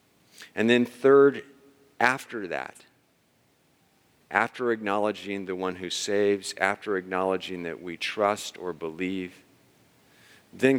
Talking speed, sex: 105 wpm, male